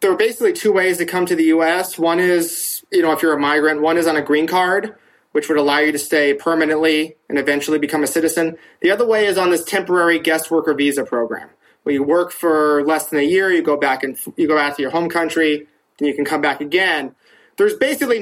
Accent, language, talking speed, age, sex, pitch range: American, English, 245 wpm, 30-49, male, 145-185 Hz